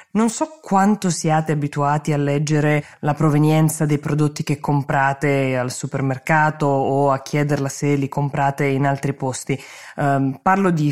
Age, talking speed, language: 20-39, 150 wpm, Italian